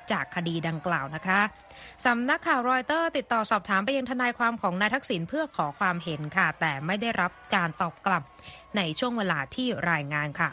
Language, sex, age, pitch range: Thai, female, 20-39, 180-245 Hz